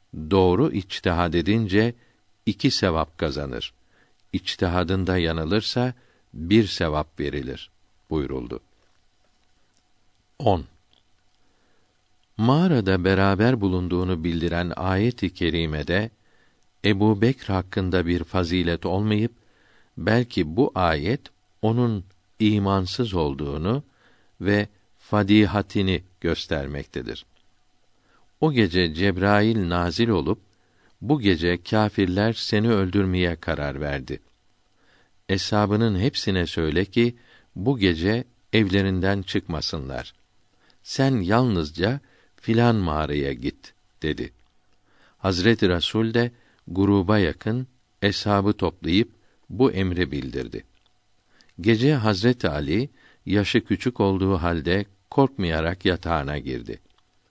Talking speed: 85 wpm